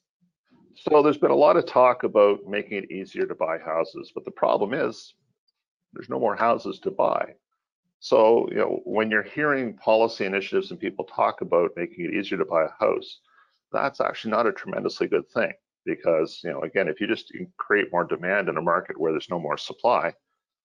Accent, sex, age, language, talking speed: American, male, 50-69, English, 200 wpm